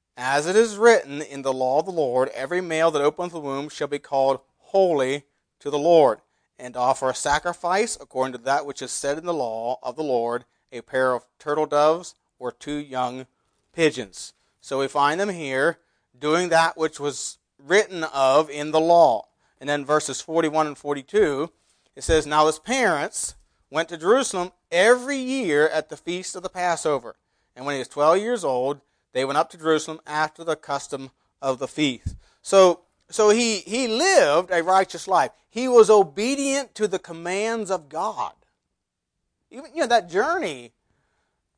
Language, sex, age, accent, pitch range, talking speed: English, male, 40-59, American, 135-185 Hz, 180 wpm